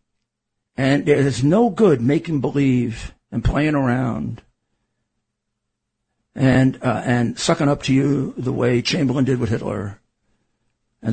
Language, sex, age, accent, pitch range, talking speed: English, male, 50-69, American, 115-145 Hz, 125 wpm